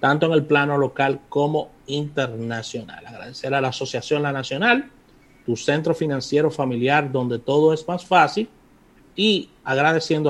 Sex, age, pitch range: male, 30-49, 120-150 Hz